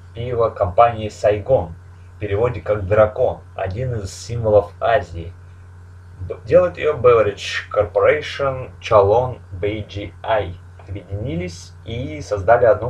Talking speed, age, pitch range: 95 wpm, 20-39, 90-115 Hz